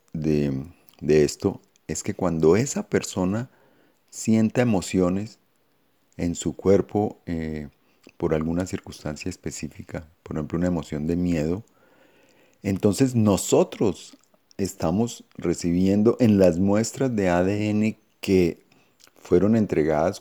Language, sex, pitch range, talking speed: Spanish, male, 85-110 Hz, 105 wpm